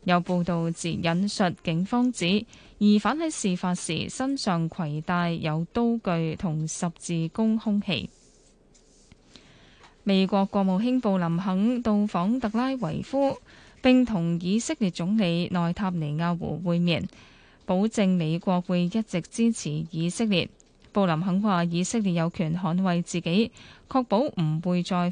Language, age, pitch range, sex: Chinese, 10-29, 170-215 Hz, female